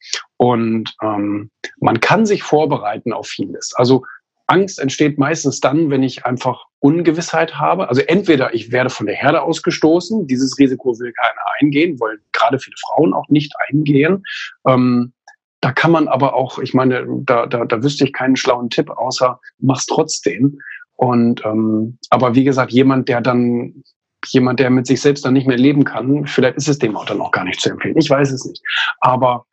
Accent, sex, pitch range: German, male, 120-145 Hz